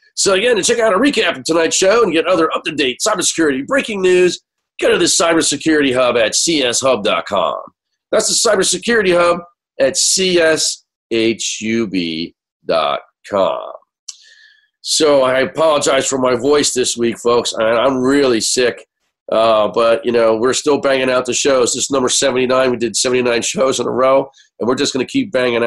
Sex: male